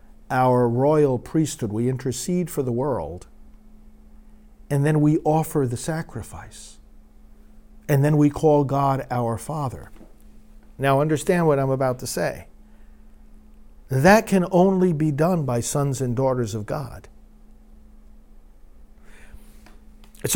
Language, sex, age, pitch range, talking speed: English, male, 50-69, 125-170 Hz, 120 wpm